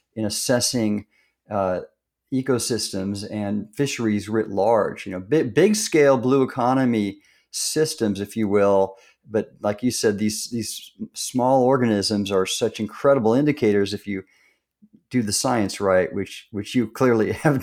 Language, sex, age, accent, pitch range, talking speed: English, male, 50-69, American, 105-125 Hz, 145 wpm